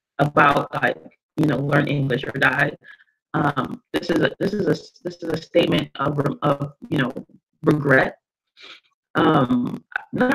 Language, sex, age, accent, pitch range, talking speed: English, female, 30-49, American, 150-190 Hz, 150 wpm